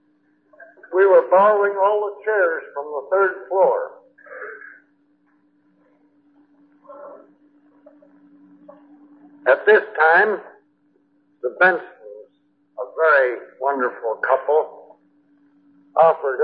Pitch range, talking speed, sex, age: 275-330 Hz, 75 wpm, male, 60-79